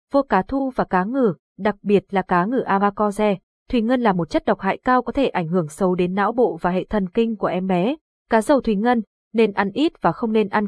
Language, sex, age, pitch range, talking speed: Vietnamese, female, 20-39, 185-235 Hz, 260 wpm